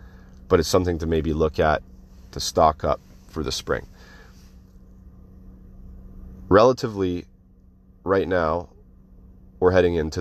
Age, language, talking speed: 30-49, English, 110 wpm